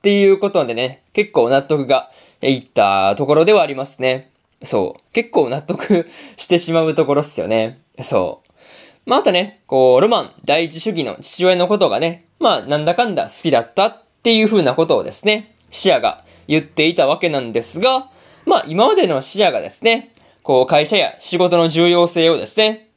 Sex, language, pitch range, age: male, Japanese, 145-210 Hz, 20-39